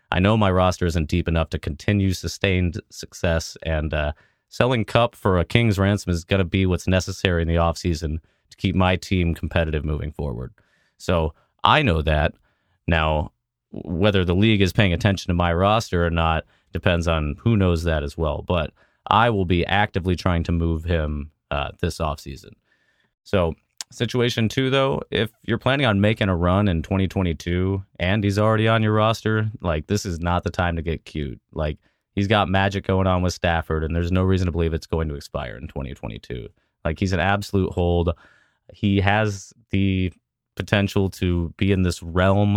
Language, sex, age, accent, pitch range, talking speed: English, male, 30-49, American, 80-100 Hz, 185 wpm